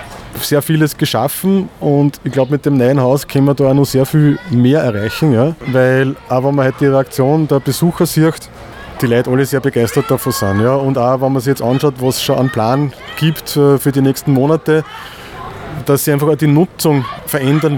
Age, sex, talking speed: 20-39, male, 210 wpm